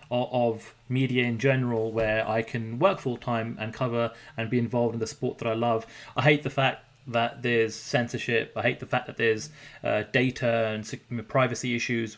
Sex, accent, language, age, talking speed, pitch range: male, British, English, 30-49, 185 wpm, 115-135 Hz